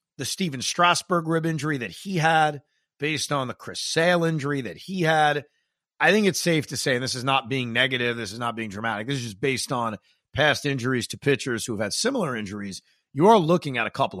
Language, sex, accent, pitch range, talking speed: English, male, American, 125-175 Hz, 220 wpm